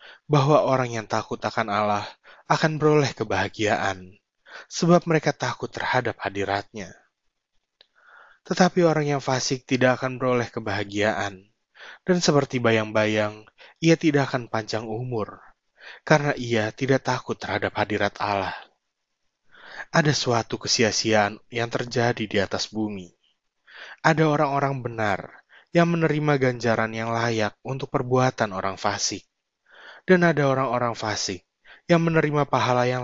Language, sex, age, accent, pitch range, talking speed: Indonesian, male, 20-39, native, 105-140 Hz, 120 wpm